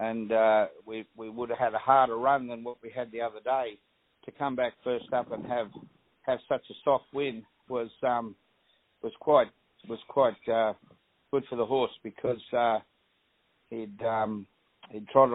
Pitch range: 110-120 Hz